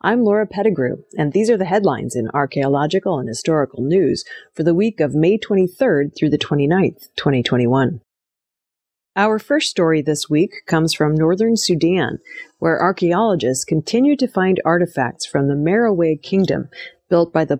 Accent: American